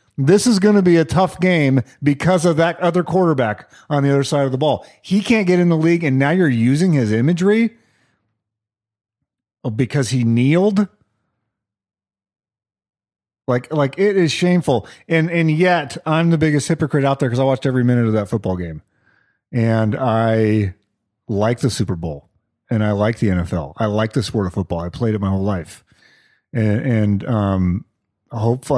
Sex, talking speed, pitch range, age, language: male, 175 wpm, 105-135 Hz, 40-59, English